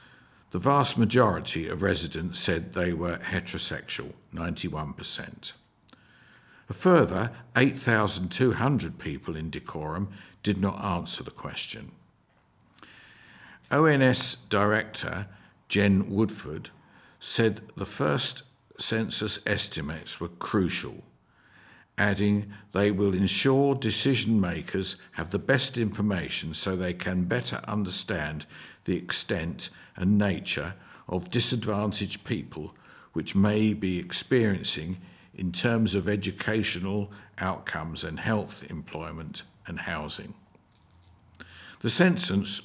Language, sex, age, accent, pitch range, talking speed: English, male, 50-69, British, 95-115 Hz, 95 wpm